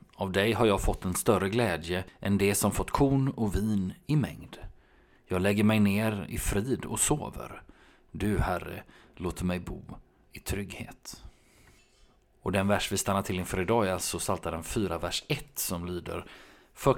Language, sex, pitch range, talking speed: Swedish, male, 90-120 Hz, 175 wpm